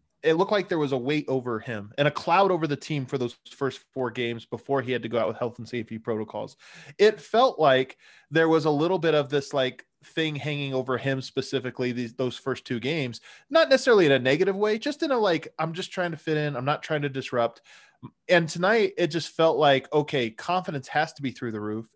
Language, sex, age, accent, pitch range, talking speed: English, male, 20-39, American, 130-160 Hz, 240 wpm